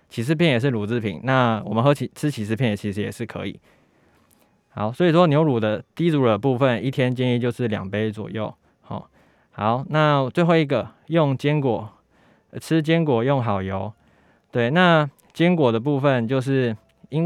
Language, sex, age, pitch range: Chinese, male, 20-39, 110-145 Hz